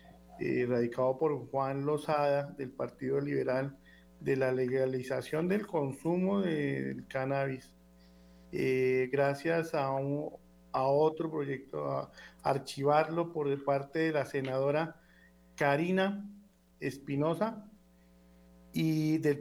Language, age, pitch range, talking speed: Spanish, 50-69, 130-160 Hz, 105 wpm